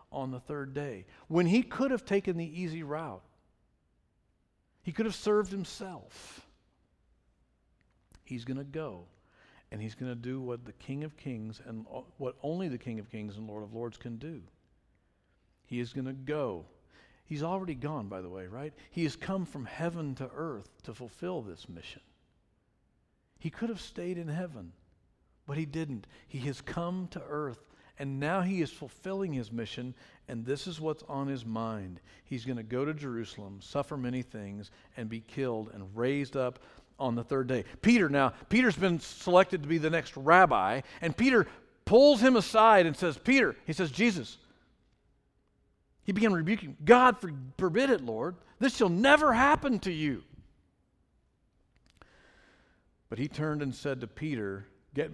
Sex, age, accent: male, 50-69, American